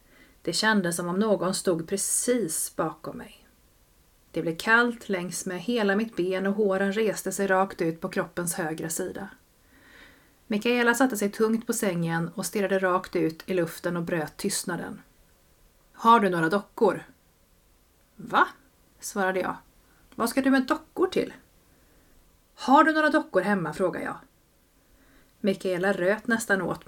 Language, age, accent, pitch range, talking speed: Swedish, 30-49, native, 175-220 Hz, 145 wpm